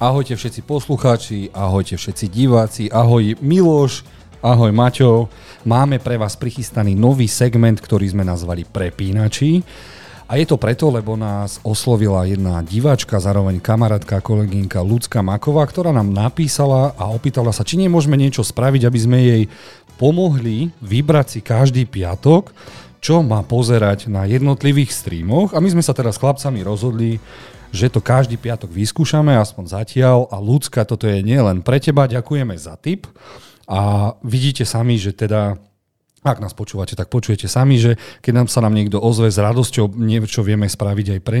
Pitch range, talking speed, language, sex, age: 105-135 Hz, 155 wpm, Slovak, male, 40-59